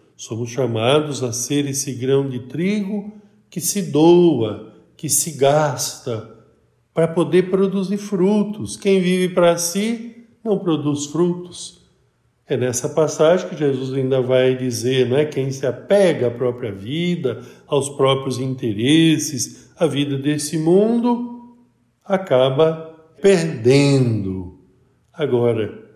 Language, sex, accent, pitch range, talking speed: Portuguese, male, Brazilian, 125-165 Hz, 120 wpm